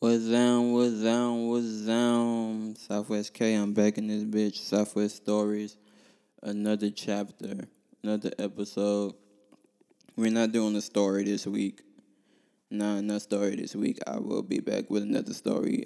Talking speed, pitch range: 145 wpm, 105-115 Hz